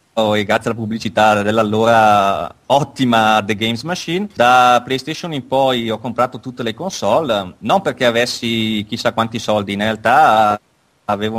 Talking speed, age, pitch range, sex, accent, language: 135 wpm, 30-49, 110-135 Hz, male, native, Italian